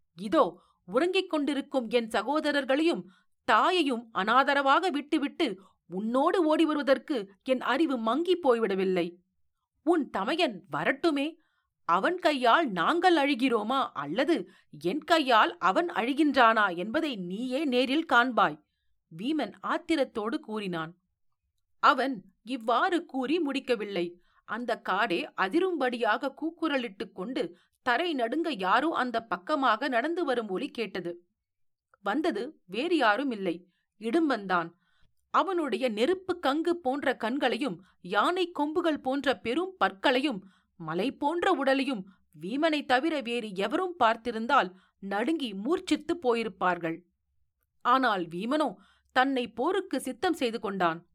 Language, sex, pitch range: Tamil, female, 205-310 Hz